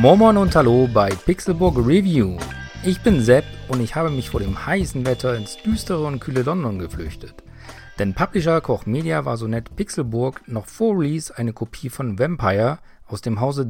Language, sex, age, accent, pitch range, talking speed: German, male, 40-59, German, 105-140 Hz, 180 wpm